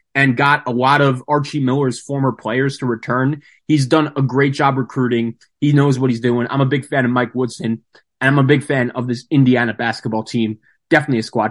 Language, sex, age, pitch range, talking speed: English, male, 20-39, 120-150 Hz, 220 wpm